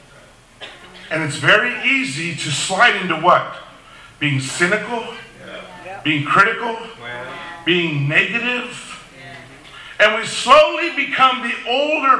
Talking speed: 100 wpm